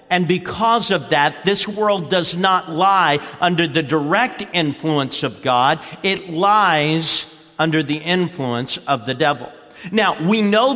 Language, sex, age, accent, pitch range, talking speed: English, male, 50-69, American, 155-200 Hz, 145 wpm